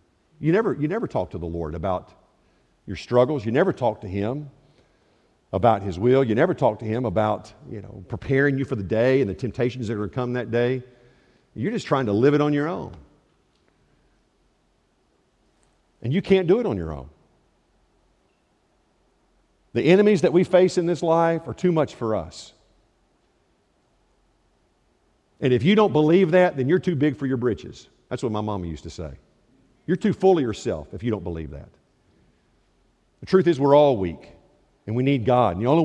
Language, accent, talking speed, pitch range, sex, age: English, American, 185 wpm, 110-175 Hz, male, 50-69